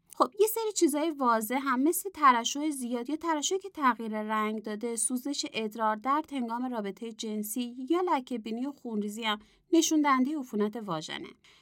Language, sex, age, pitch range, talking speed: Persian, female, 30-49, 220-305 Hz, 155 wpm